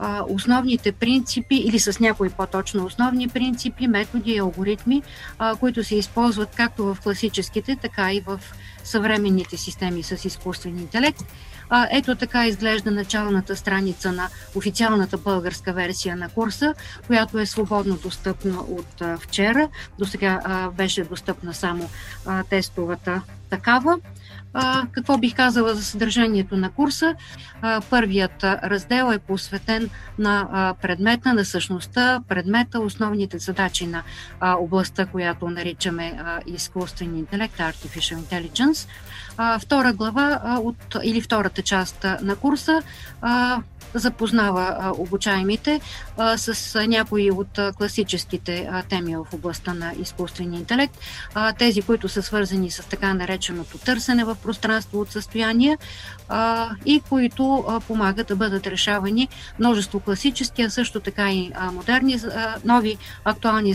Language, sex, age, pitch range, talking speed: Bulgarian, female, 50-69, 185-230 Hz, 135 wpm